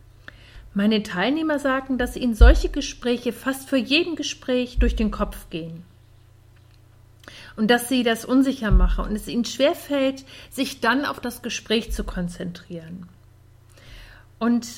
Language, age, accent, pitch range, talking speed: German, 50-69, German, 175-275 Hz, 140 wpm